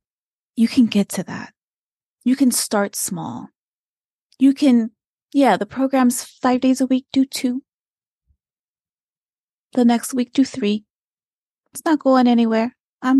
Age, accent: 30-49, American